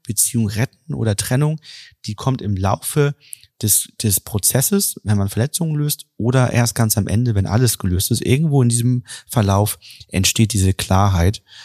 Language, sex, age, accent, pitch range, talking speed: German, male, 30-49, German, 100-125 Hz, 160 wpm